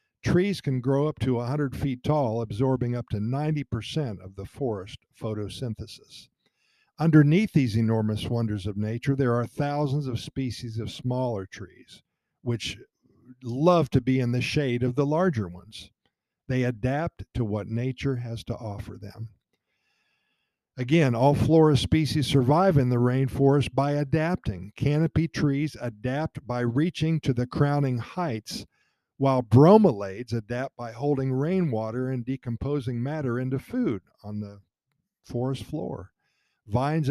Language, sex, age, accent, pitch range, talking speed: Italian, male, 50-69, American, 115-145 Hz, 135 wpm